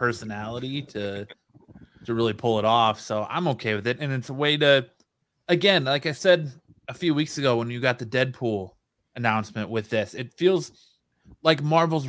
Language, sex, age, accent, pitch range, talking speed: English, male, 20-39, American, 115-150 Hz, 185 wpm